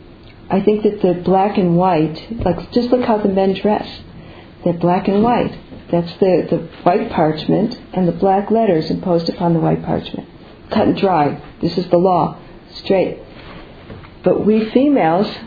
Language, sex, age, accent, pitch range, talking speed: English, female, 50-69, American, 170-230 Hz, 165 wpm